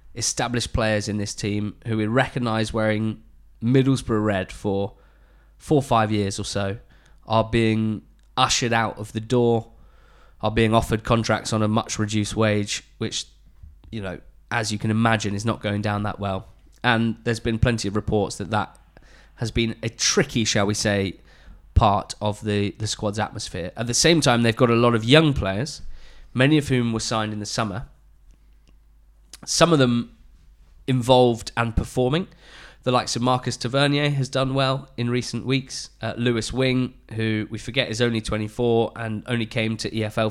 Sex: male